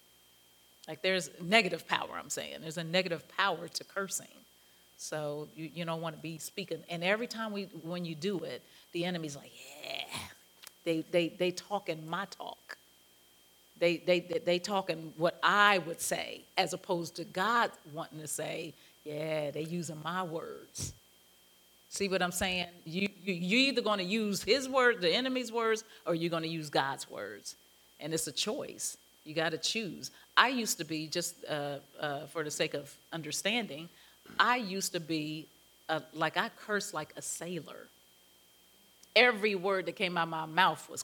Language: English